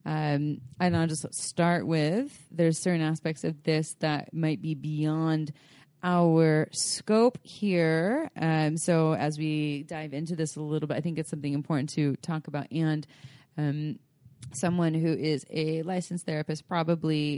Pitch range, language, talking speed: 150-170 Hz, English, 155 wpm